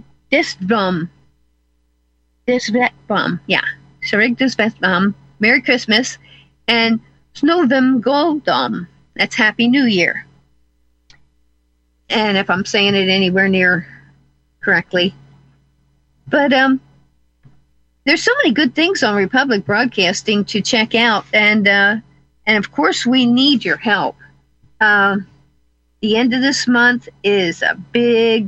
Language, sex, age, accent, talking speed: English, female, 50-69, American, 125 wpm